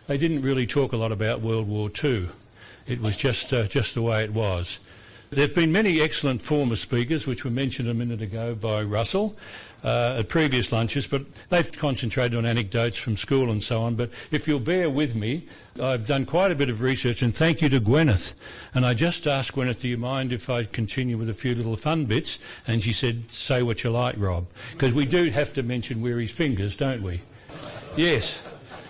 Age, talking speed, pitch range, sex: 60-79, 210 wpm, 115-140 Hz, male